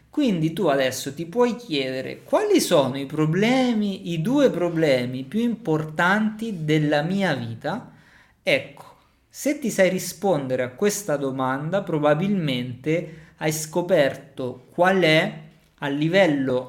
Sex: male